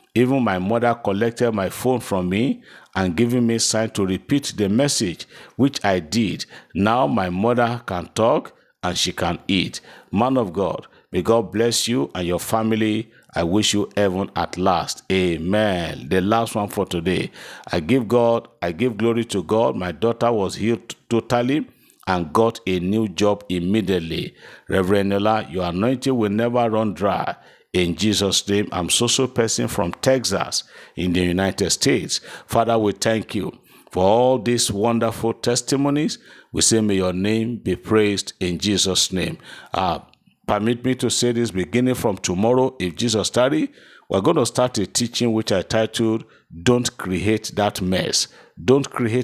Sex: male